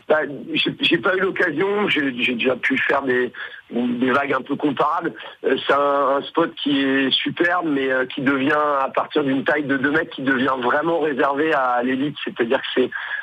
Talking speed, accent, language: 195 wpm, French, French